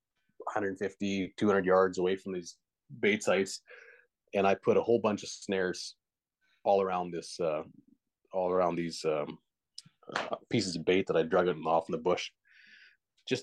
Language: English